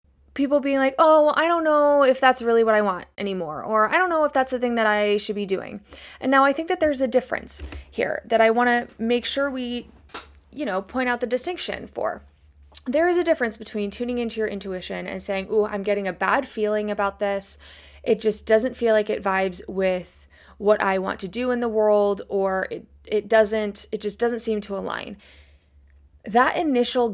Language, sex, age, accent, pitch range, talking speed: English, female, 20-39, American, 195-245 Hz, 215 wpm